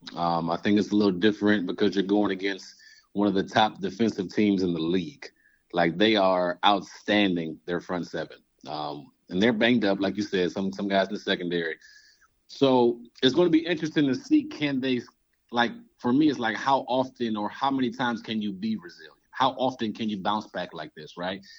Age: 30-49